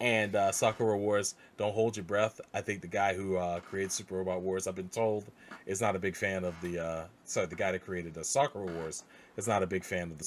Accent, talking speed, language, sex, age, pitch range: American, 255 wpm, English, male, 30-49, 90-110 Hz